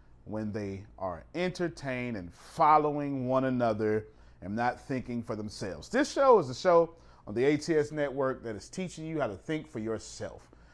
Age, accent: 30-49, American